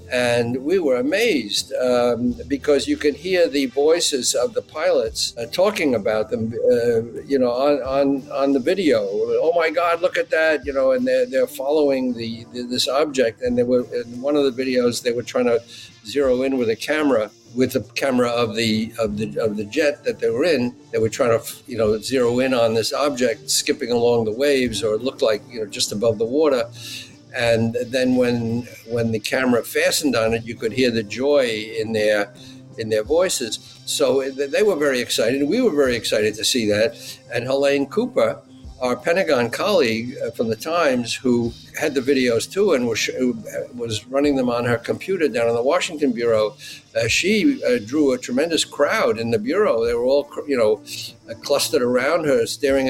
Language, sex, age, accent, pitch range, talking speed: English, male, 60-79, American, 115-150 Hz, 195 wpm